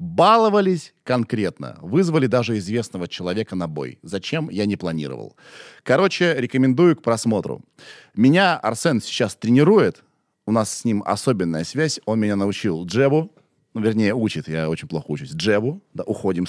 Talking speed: 145 wpm